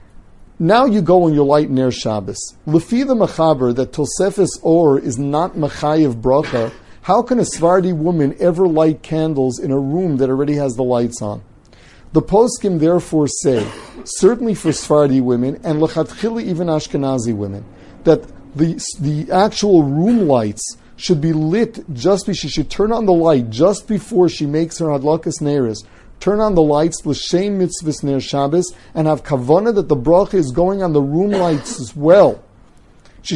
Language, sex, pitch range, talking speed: English, male, 135-185 Hz, 170 wpm